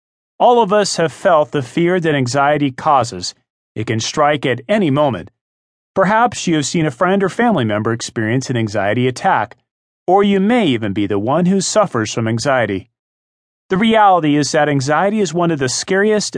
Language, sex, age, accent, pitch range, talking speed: English, male, 40-59, American, 120-190 Hz, 185 wpm